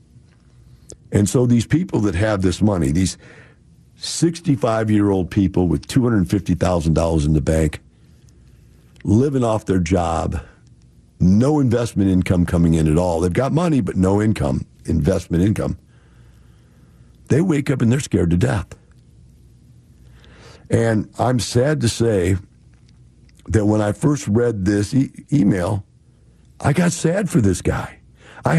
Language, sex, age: English, male, 60-79